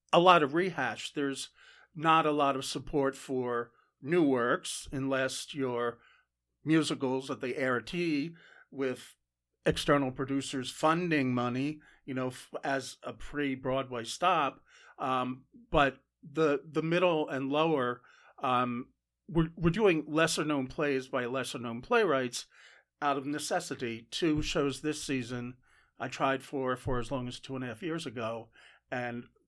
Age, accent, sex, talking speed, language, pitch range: 50-69, American, male, 135 wpm, English, 125-145 Hz